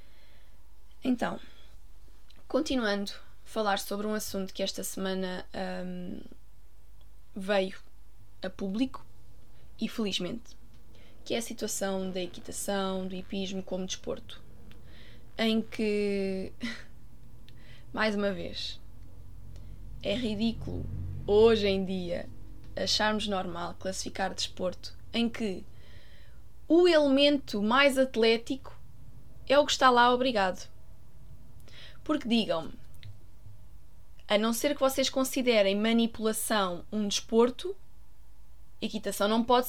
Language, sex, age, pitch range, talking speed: Portuguese, female, 20-39, 185-235 Hz, 100 wpm